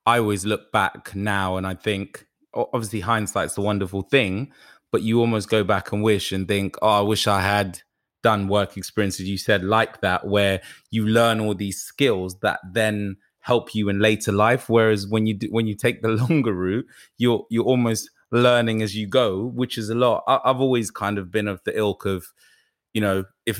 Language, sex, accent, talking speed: English, male, British, 205 wpm